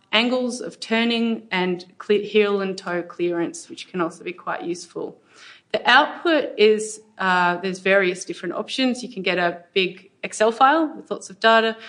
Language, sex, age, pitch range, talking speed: English, female, 30-49, 175-215 Hz, 165 wpm